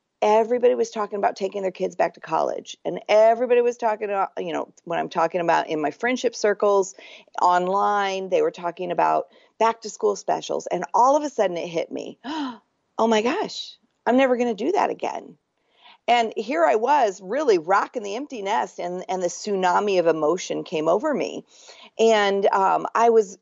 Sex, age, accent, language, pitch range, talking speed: female, 40-59, American, English, 175-230 Hz, 190 wpm